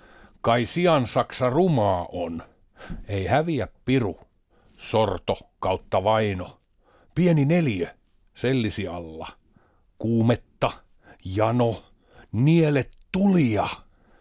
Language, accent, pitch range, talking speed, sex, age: Finnish, native, 95-150 Hz, 75 wpm, male, 50-69